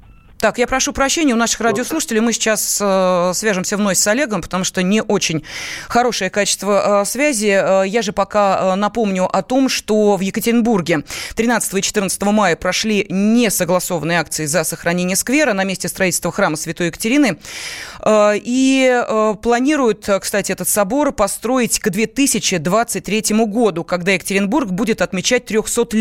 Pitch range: 185-235 Hz